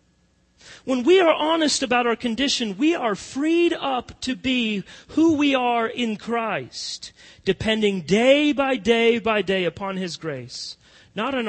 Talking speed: 150 wpm